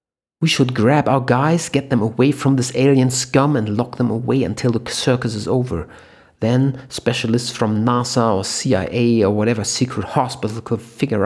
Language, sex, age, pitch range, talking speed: English, male, 50-69, 105-125 Hz, 175 wpm